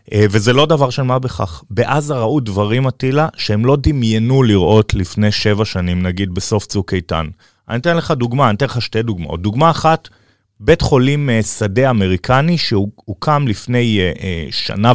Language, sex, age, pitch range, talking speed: Hebrew, male, 30-49, 100-130 Hz, 155 wpm